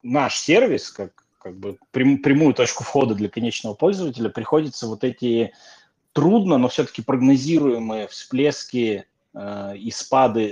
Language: Russian